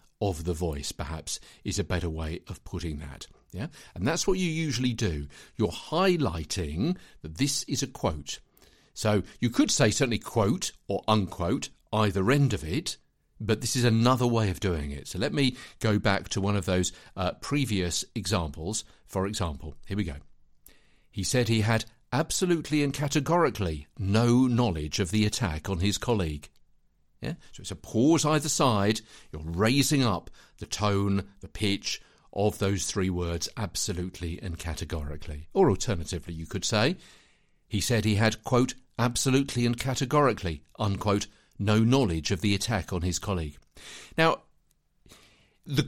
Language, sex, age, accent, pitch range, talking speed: English, male, 50-69, British, 90-125 Hz, 160 wpm